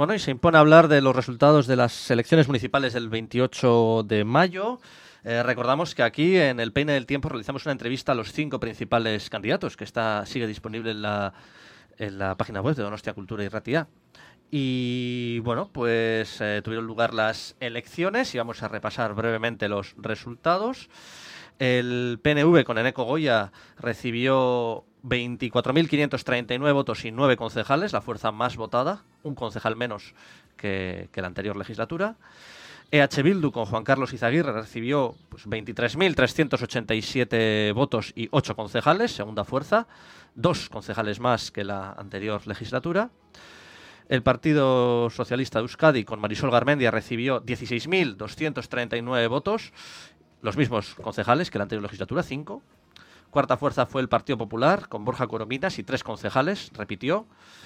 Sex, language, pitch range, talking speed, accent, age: male, English, 110-140 Hz, 145 wpm, Spanish, 20-39